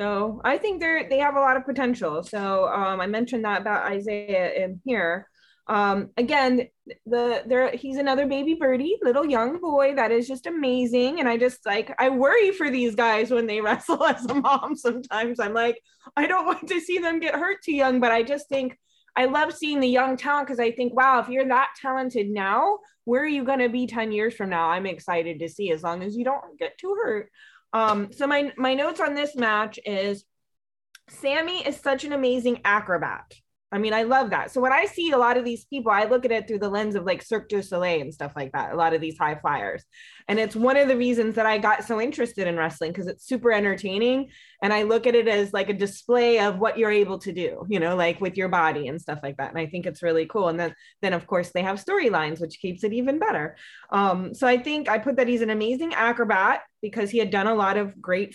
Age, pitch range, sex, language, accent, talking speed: 20-39, 200-265 Hz, female, English, American, 240 wpm